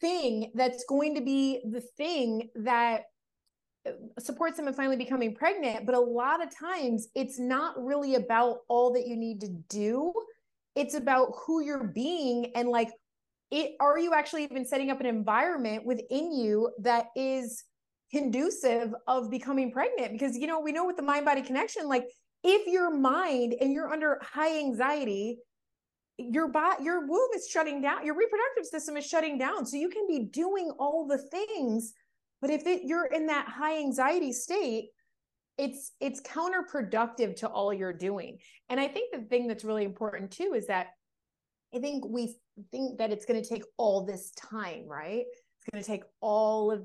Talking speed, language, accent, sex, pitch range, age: 180 wpm, English, American, female, 220-300 Hz, 30-49